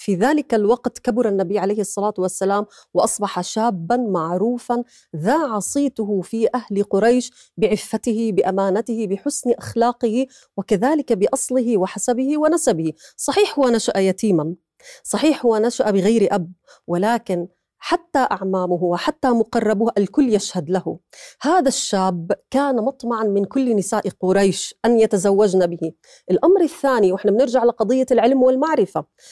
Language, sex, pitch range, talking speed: Arabic, female, 205-260 Hz, 120 wpm